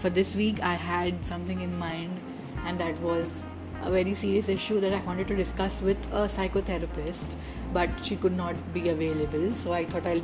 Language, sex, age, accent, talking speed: English, female, 30-49, Indian, 195 wpm